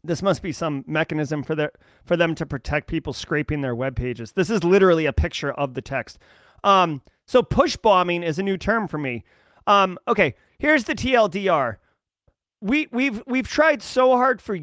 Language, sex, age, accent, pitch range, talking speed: English, male, 30-49, American, 175-245 Hz, 190 wpm